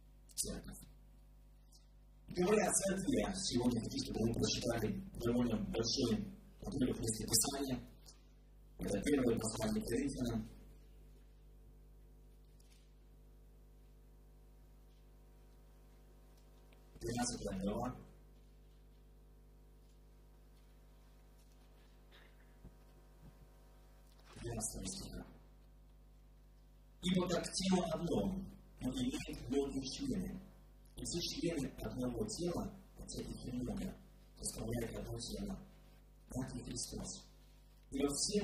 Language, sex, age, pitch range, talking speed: Russian, male, 50-69, 120-180 Hz, 55 wpm